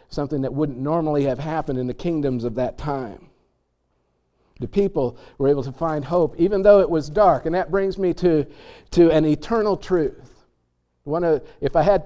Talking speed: 180 wpm